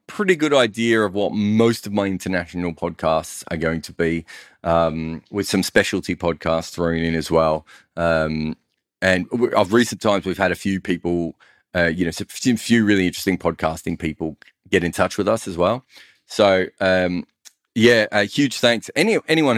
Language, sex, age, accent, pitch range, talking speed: English, male, 30-49, Australian, 85-105 Hz, 175 wpm